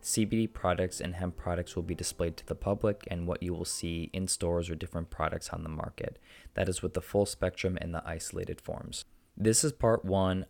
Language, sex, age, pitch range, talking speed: English, male, 20-39, 90-100 Hz, 215 wpm